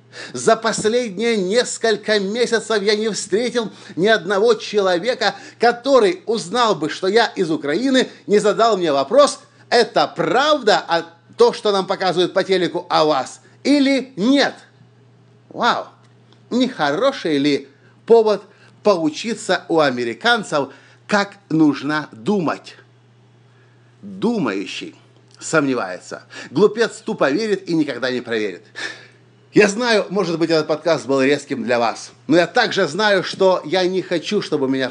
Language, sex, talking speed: Russian, male, 125 wpm